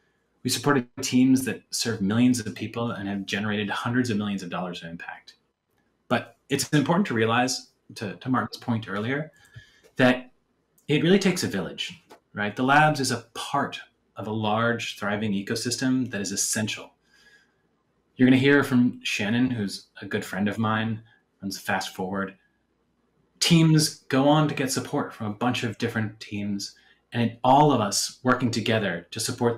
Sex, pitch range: male, 105-135 Hz